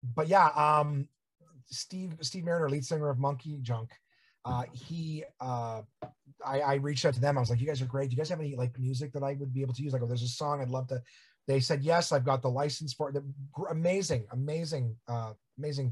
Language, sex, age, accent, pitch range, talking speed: English, male, 30-49, American, 125-150 Hz, 235 wpm